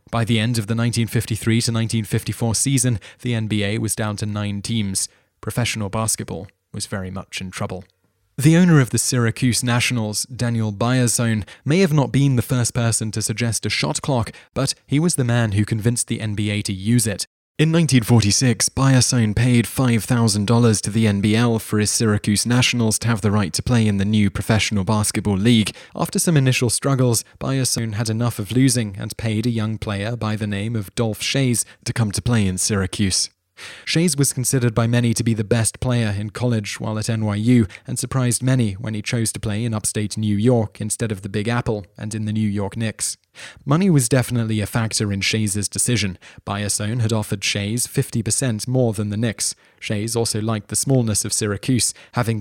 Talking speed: 190 wpm